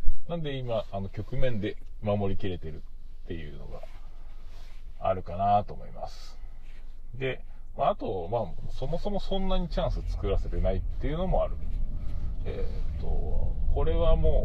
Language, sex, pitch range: Japanese, male, 80-105 Hz